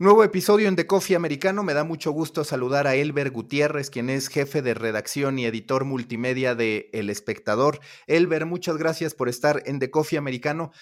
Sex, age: male, 30-49